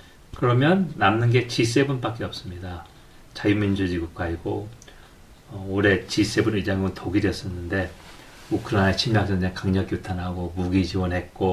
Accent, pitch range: native, 95-130 Hz